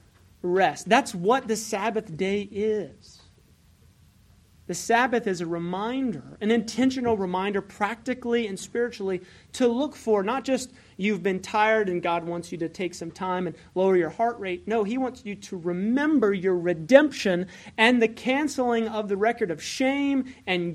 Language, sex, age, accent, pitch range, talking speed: English, male, 30-49, American, 165-225 Hz, 160 wpm